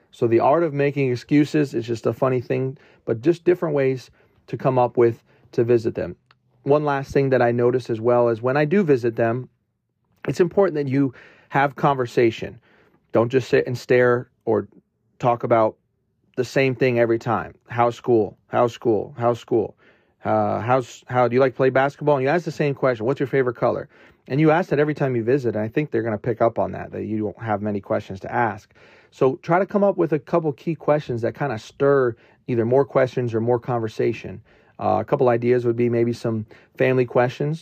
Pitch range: 115-135 Hz